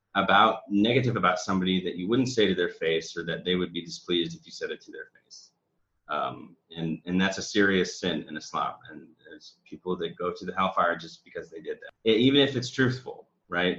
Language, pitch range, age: English, 90-105 Hz, 30-49